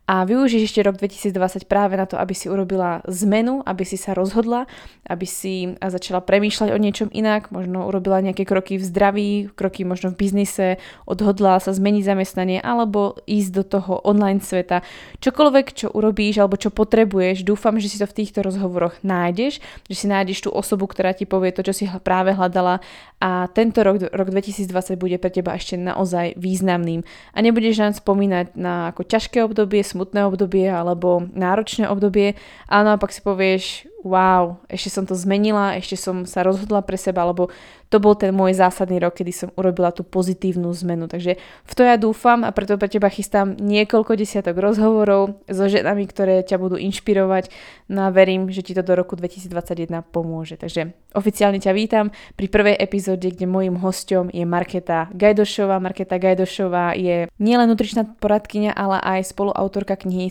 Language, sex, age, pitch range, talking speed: Slovak, female, 20-39, 185-205 Hz, 175 wpm